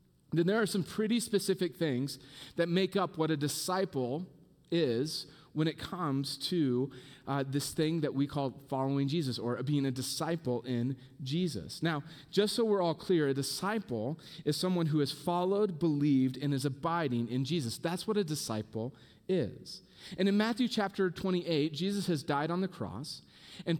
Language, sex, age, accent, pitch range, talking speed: English, male, 30-49, American, 145-195 Hz, 170 wpm